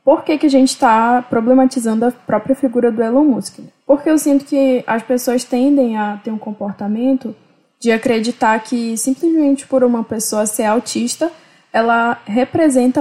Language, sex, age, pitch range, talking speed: Portuguese, female, 10-29, 225-275 Hz, 160 wpm